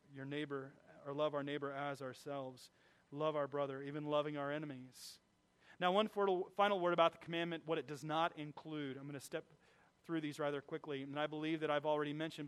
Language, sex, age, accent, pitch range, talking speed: English, male, 30-49, American, 145-165 Hz, 200 wpm